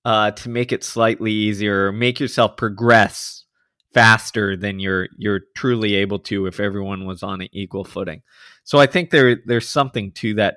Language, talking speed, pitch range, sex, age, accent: English, 175 wpm, 105-125 Hz, male, 20-39, American